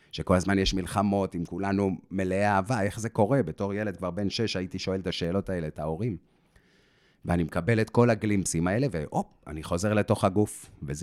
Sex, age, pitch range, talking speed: male, 30-49, 85-105 Hz, 190 wpm